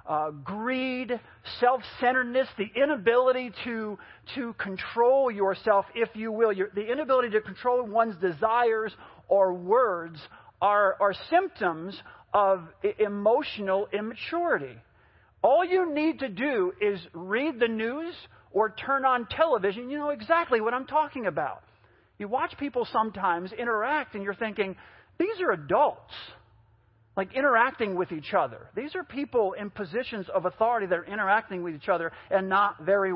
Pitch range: 190-260 Hz